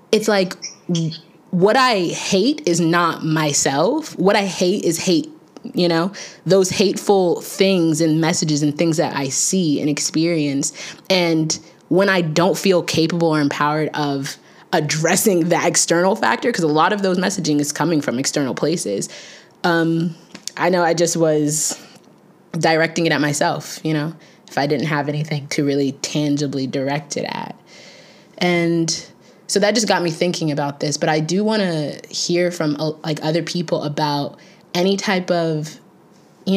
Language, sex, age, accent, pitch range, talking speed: English, female, 20-39, American, 150-185 Hz, 160 wpm